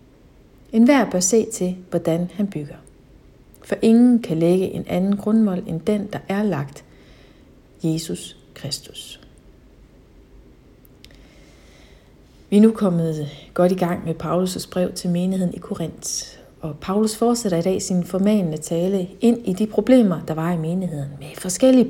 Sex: female